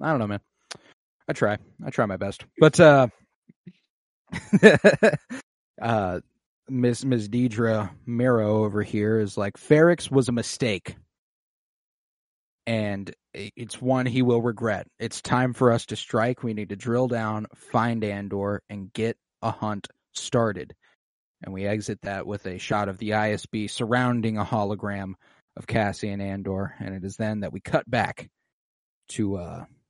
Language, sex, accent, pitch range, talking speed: English, male, American, 105-130 Hz, 150 wpm